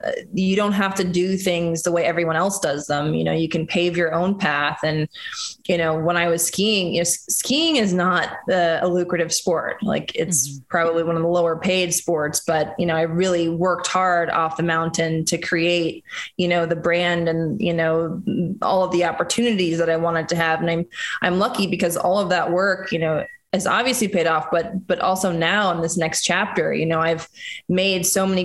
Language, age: English, 20-39